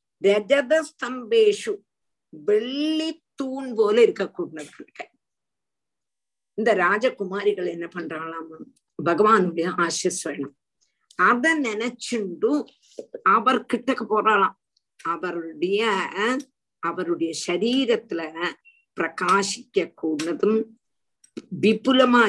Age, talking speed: 50-69, 60 wpm